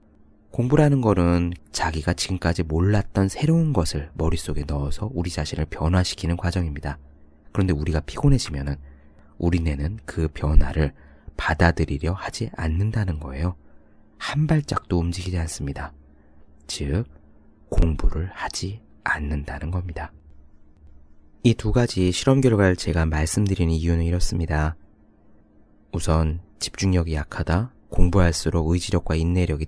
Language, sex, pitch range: Korean, male, 75-100 Hz